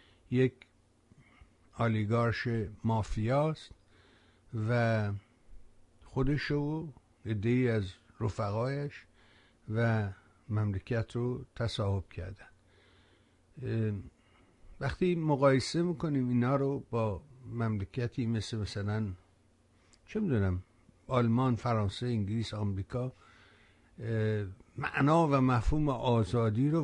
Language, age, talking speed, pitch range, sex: Persian, 60-79, 75 wpm, 105-135 Hz, male